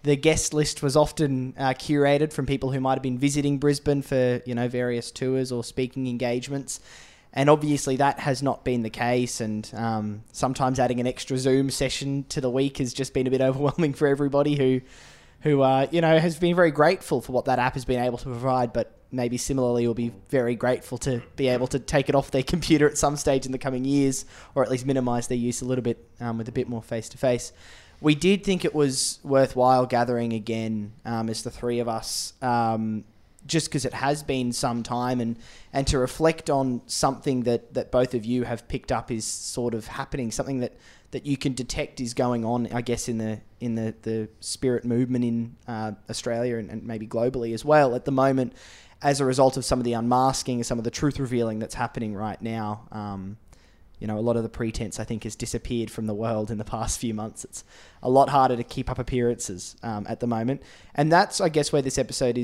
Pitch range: 115-135 Hz